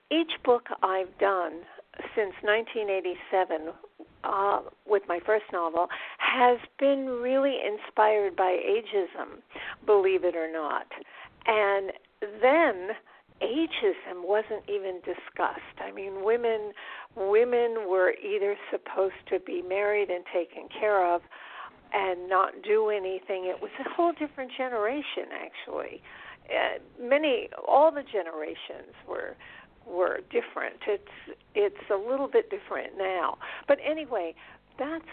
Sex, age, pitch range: female, 50-69, 190-285 Hz